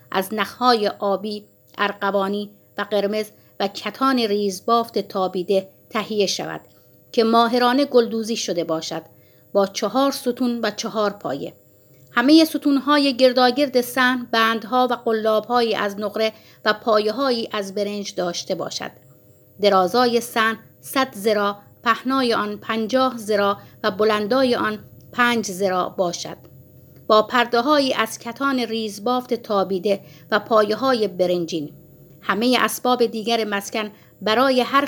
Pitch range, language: 200-245 Hz, Persian